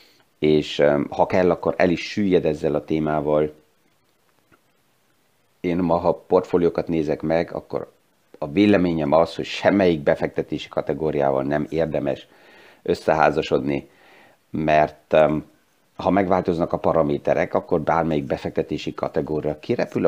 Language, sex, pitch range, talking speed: Hungarian, male, 75-95 Hz, 110 wpm